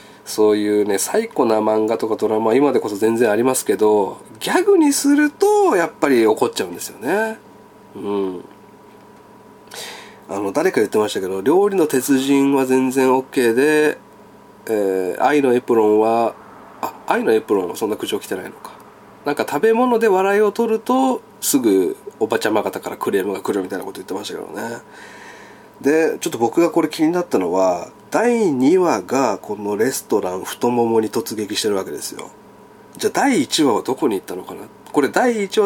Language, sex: Japanese, male